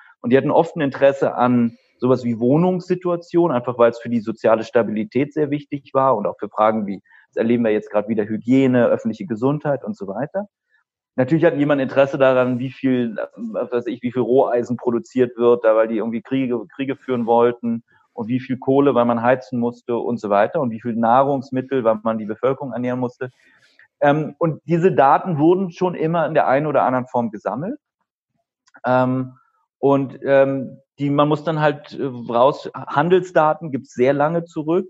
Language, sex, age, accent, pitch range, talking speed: German, male, 30-49, German, 120-145 Hz, 185 wpm